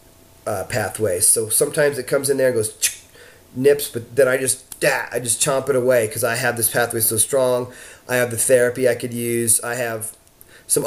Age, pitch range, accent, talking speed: 30-49, 110-130 Hz, American, 210 wpm